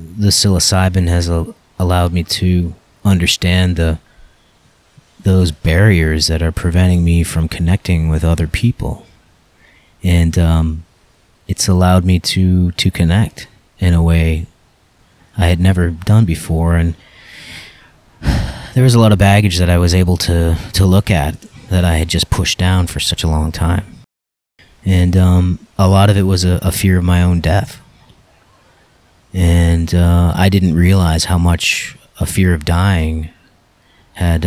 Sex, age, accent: male, 30-49, American